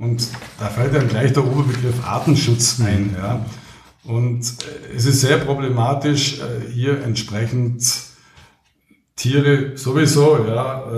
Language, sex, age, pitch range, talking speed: German, male, 50-69, 115-135 Hz, 110 wpm